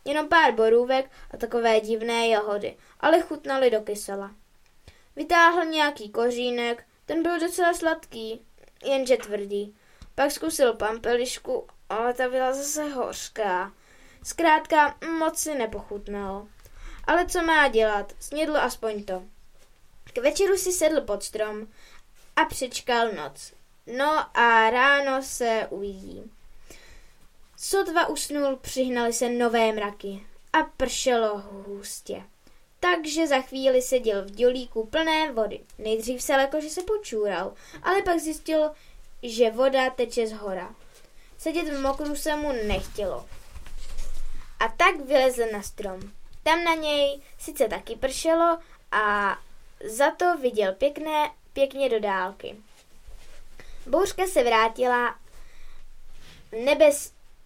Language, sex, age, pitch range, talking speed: Czech, female, 20-39, 225-310 Hz, 115 wpm